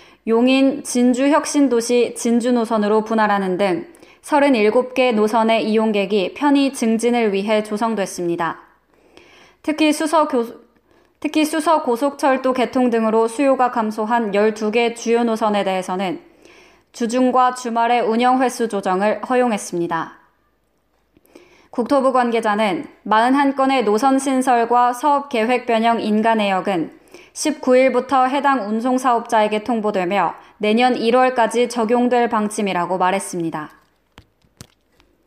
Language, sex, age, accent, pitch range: Korean, female, 20-39, native, 220-265 Hz